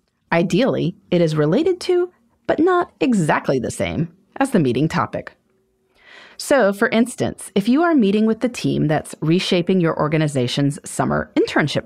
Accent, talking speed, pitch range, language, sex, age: American, 150 wpm, 160-245 Hz, English, female, 30-49